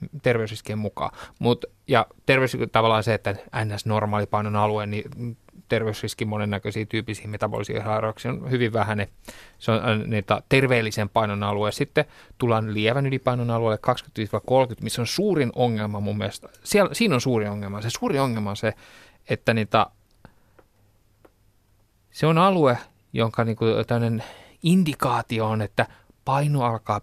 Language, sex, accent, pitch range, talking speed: Finnish, male, native, 105-140 Hz, 125 wpm